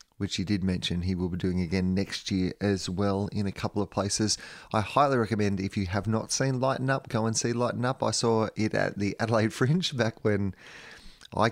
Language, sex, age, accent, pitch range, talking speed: English, male, 30-49, Australian, 95-110 Hz, 225 wpm